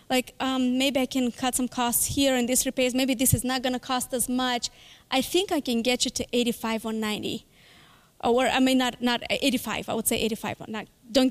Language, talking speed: English, 225 wpm